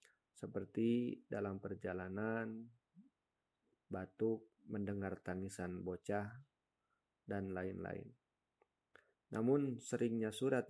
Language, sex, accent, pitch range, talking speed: Indonesian, male, native, 95-115 Hz, 65 wpm